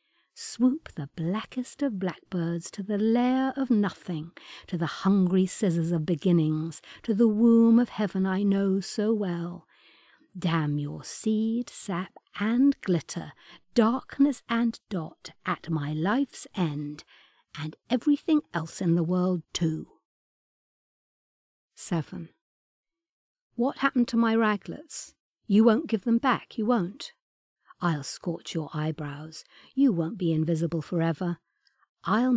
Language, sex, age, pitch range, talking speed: English, female, 50-69, 165-235 Hz, 125 wpm